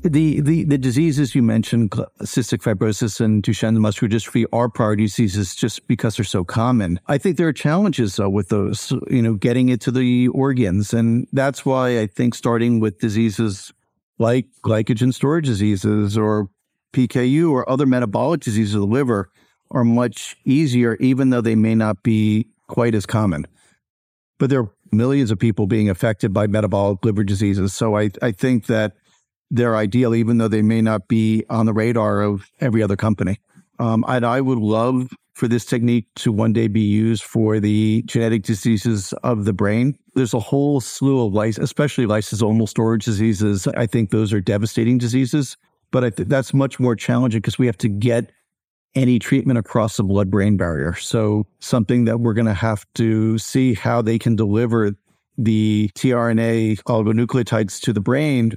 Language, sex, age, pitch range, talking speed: English, male, 50-69, 110-125 Hz, 175 wpm